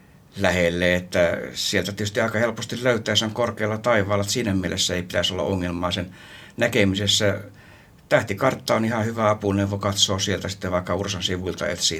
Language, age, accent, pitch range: Finnish, 60-79, native, 100-110 Hz